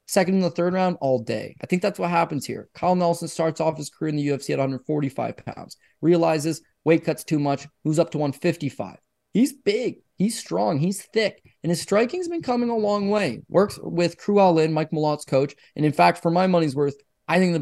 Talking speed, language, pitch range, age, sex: 220 wpm, English, 140-175 Hz, 20-39, male